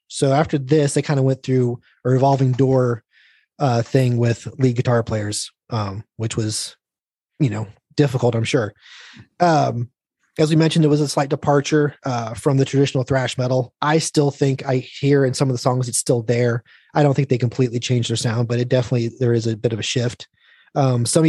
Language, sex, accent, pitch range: English, male, American, 125-155 Hz